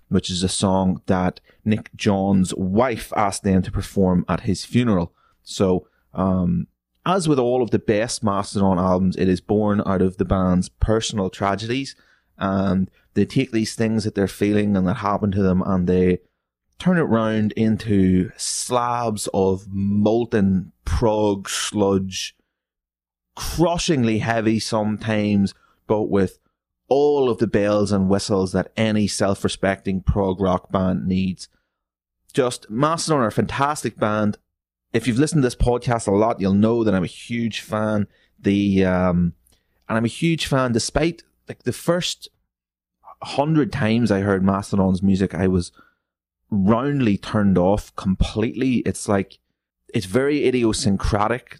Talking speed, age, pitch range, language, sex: 145 wpm, 30-49, 95-115 Hz, English, male